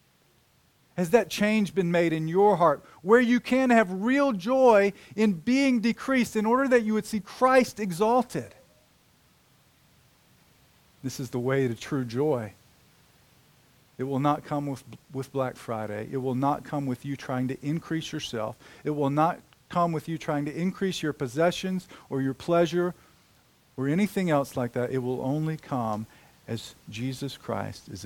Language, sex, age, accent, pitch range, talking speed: English, male, 40-59, American, 130-170 Hz, 165 wpm